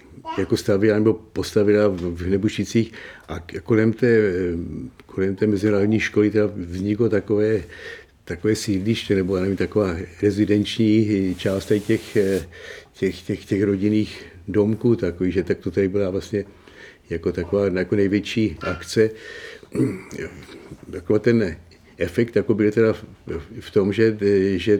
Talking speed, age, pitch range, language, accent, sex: 120 wpm, 60-79, 100-110 Hz, Czech, native, male